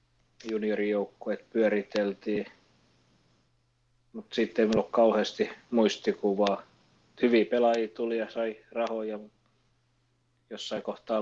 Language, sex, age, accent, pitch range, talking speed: Finnish, male, 30-49, native, 100-115 Hz, 90 wpm